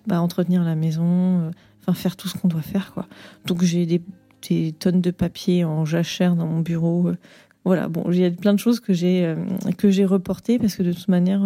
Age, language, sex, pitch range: 30-49, French, female, 165-195 Hz